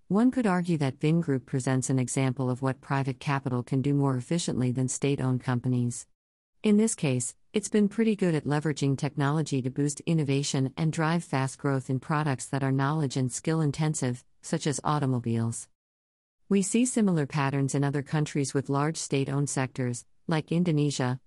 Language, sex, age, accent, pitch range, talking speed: English, female, 50-69, American, 130-155 Hz, 175 wpm